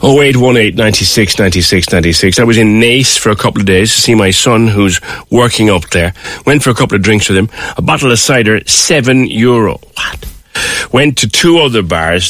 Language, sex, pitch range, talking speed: English, male, 95-125 Hz, 190 wpm